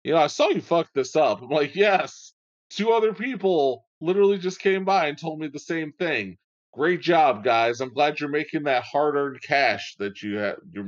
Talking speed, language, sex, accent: 200 wpm, English, male, American